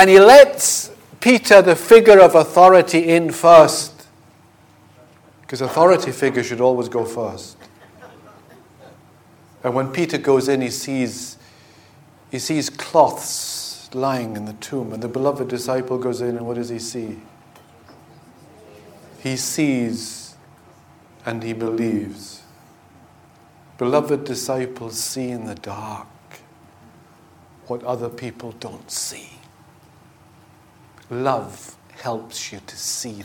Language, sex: English, male